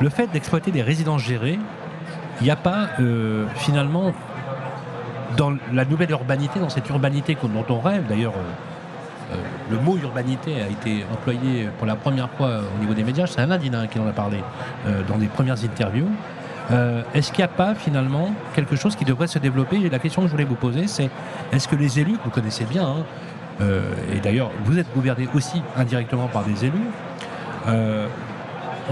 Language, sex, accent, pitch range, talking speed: French, male, French, 120-165 Hz, 195 wpm